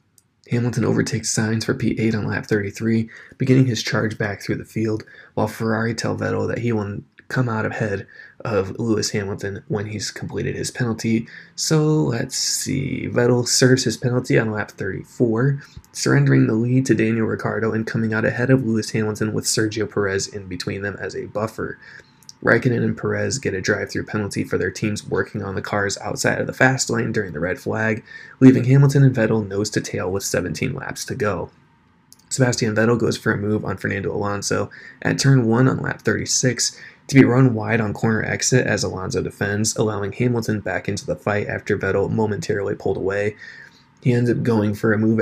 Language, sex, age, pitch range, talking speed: English, male, 20-39, 105-125 Hz, 185 wpm